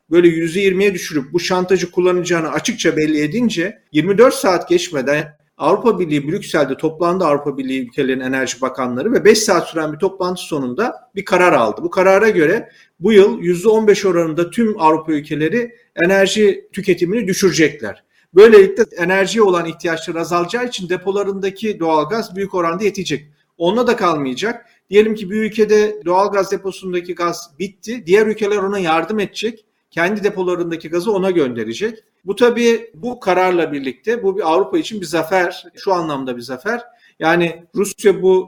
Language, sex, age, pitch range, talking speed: Turkish, male, 40-59, 165-210 Hz, 155 wpm